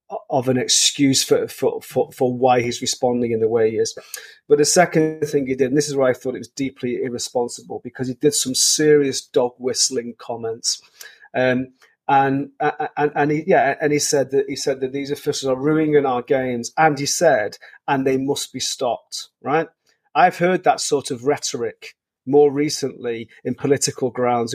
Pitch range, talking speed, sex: 130-150 Hz, 190 wpm, male